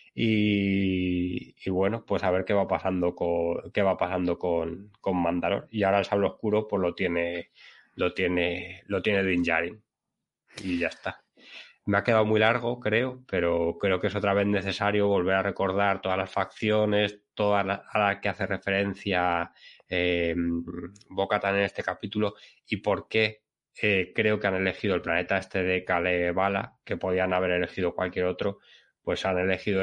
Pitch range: 90-105 Hz